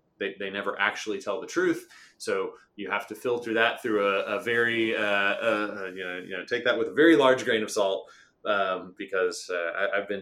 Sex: male